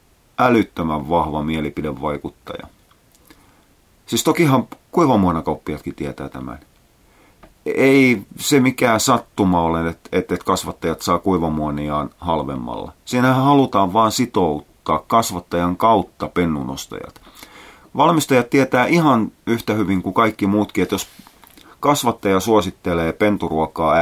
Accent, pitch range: native, 80-110 Hz